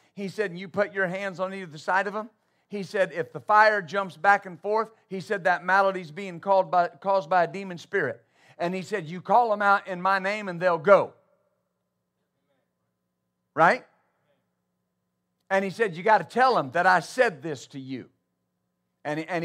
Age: 50-69